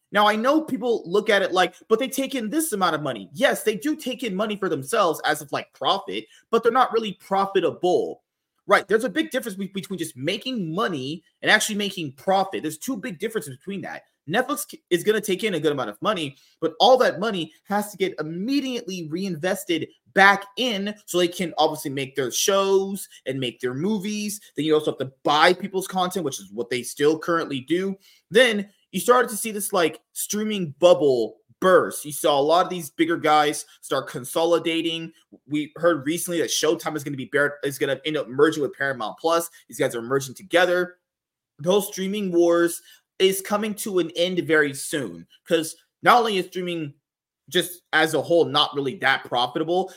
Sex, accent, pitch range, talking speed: male, American, 155-210 Hz, 200 wpm